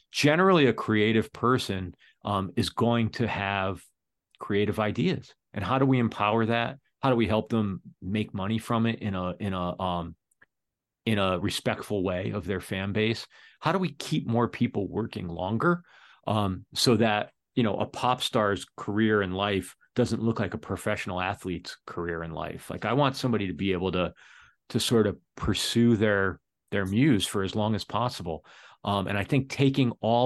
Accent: American